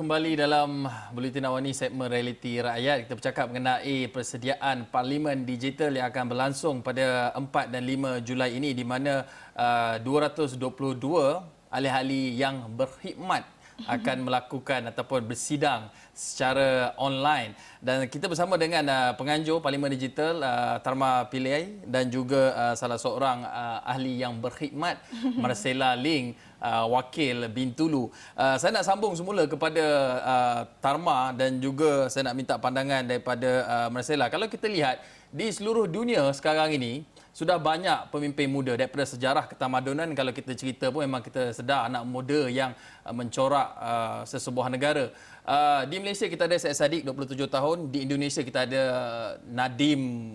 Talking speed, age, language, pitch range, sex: 140 wpm, 20-39, Malay, 125-150 Hz, male